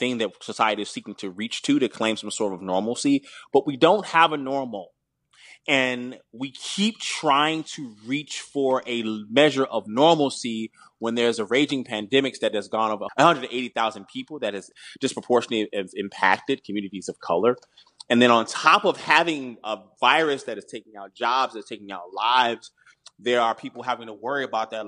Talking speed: 180 wpm